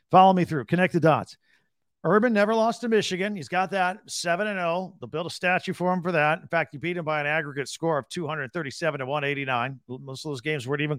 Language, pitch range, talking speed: English, 145-190 Hz, 225 wpm